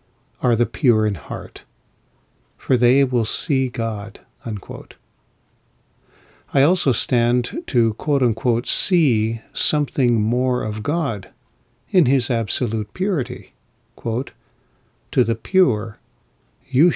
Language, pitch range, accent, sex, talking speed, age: English, 115-135 Hz, American, male, 110 wpm, 50-69